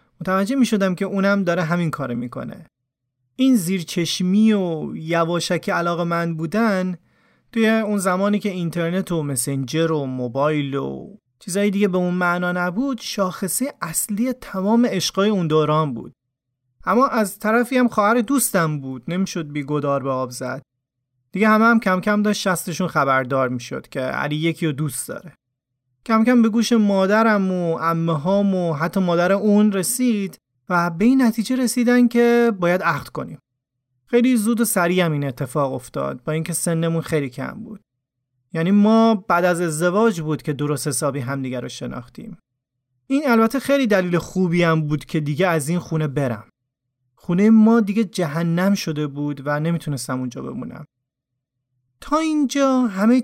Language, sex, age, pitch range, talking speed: Persian, male, 30-49, 140-210 Hz, 160 wpm